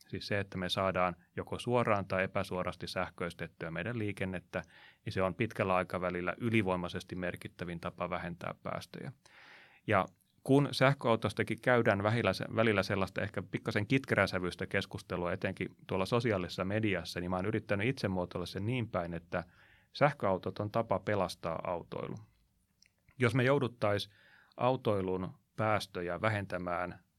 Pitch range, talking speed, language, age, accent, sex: 90-110 Hz, 130 wpm, Finnish, 30-49, native, male